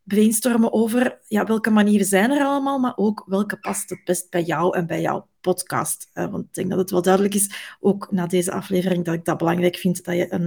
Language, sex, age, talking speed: Dutch, female, 30-49, 230 wpm